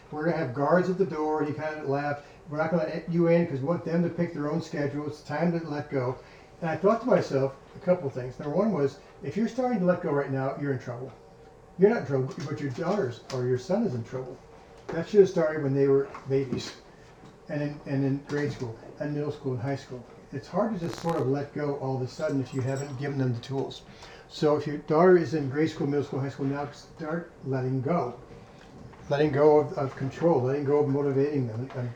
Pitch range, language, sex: 135-160 Hz, English, male